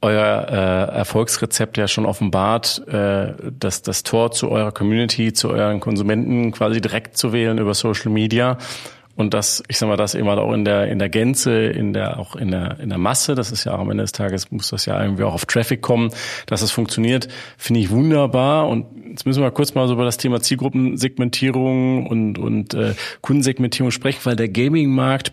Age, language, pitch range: 40-59, German, 105-125 Hz